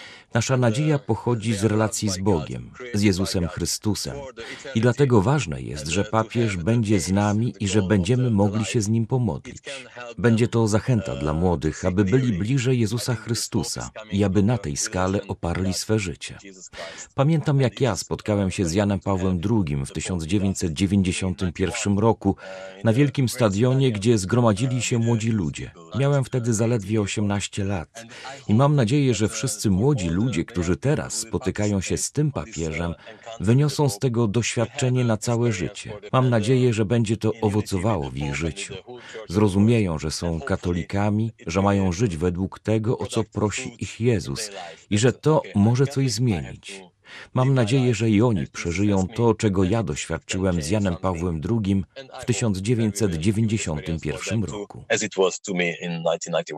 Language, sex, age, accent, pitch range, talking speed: Polish, male, 40-59, native, 95-120 Hz, 145 wpm